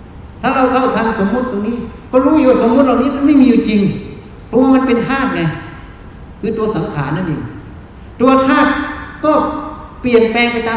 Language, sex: Thai, male